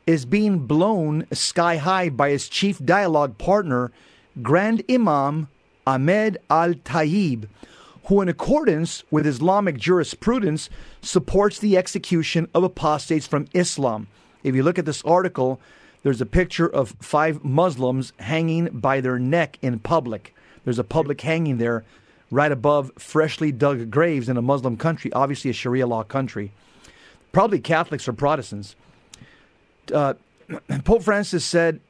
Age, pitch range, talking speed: 40-59, 140-180 Hz, 135 wpm